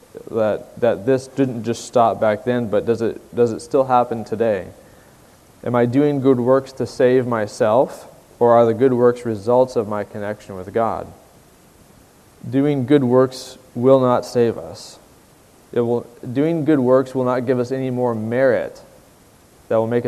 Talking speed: 170 wpm